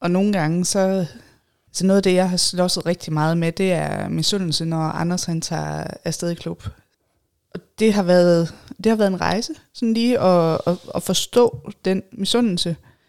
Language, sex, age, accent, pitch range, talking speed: Danish, female, 20-39, native, 160-200 Hz, 190 wpm